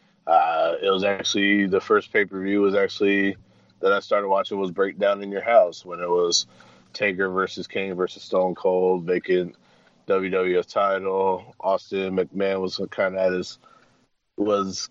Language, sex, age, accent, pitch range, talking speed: English, male, 20-39, American, 95-110 Hz, 160 wpm